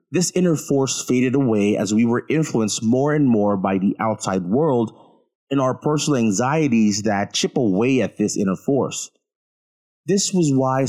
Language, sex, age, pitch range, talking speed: English, male, 30-49, 105-150 Hz, 165 wpm